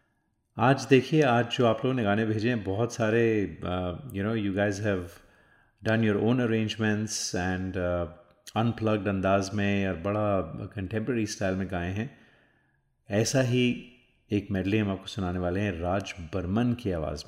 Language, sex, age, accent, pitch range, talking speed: Hindi, male, 30-49, native, 95-110 Hz, 155 wpm